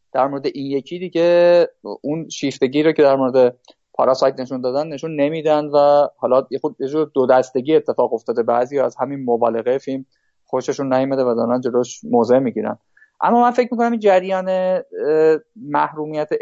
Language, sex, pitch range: Persian, male, 130-175 Hz